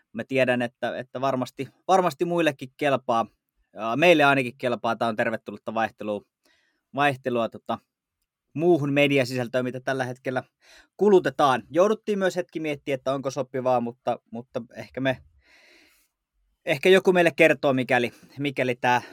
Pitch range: 125-160 Hz